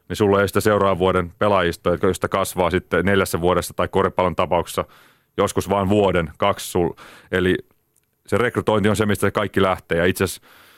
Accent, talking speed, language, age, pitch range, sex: native, 165 wpm, Finnish, 30-49, 90-105 Hz, male